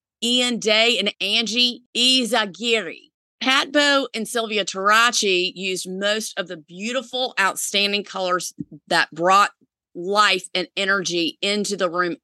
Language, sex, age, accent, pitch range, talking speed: English, female, 30-49, American, 180-220 Hz, 125 wpm